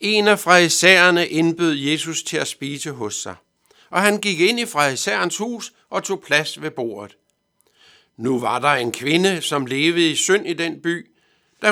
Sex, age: male, 60-79